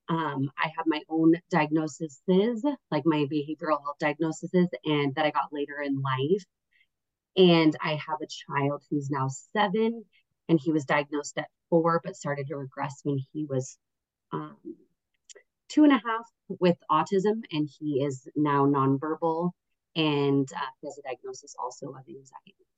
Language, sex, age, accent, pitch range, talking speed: English, female, 30-49, American, 140-170 Hz, 155 wpm